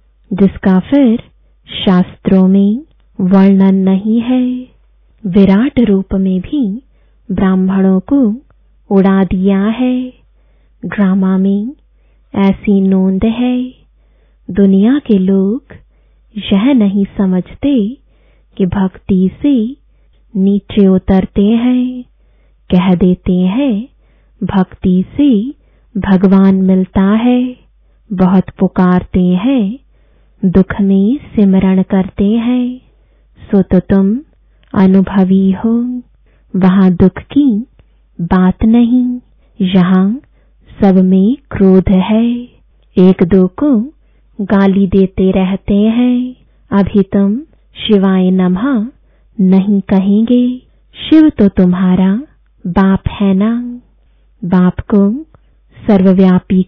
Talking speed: 90 wpm